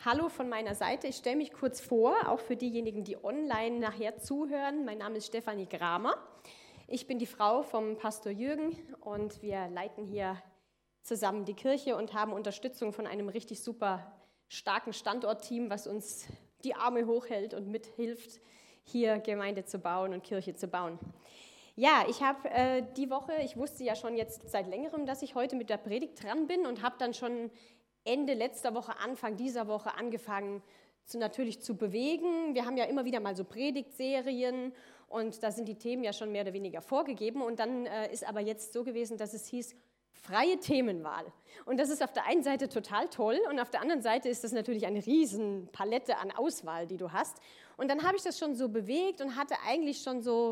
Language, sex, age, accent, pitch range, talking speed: German, female, 20-39, German, 210-260 Hz, 195 wpm